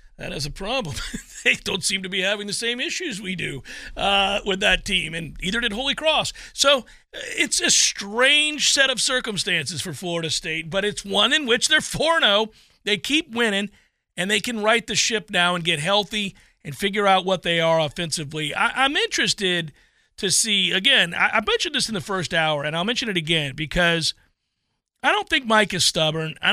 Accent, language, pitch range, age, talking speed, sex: American, English, 165-210 Hz, 40-59, 195 wpm, male